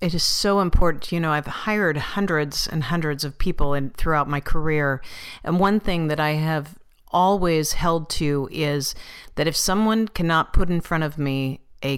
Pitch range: 150-185 Hz